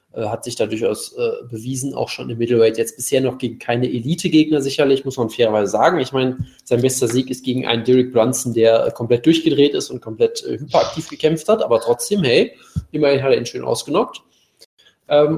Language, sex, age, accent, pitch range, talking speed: German, male, 20-39, German, 125-155 Hz, 200 wpm